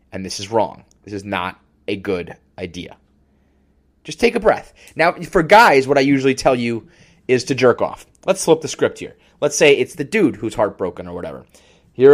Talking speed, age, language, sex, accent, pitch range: 205 wpm, 30-49, English, male, American, 100-160 Hz